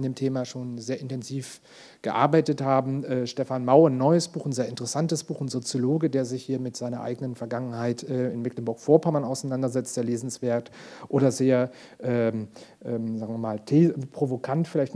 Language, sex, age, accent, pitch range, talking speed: German, male, 40-59, German, 120-140 Hz, 170 wpm